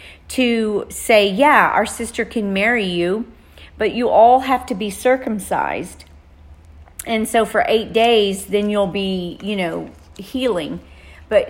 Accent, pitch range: American, 185-225 Hz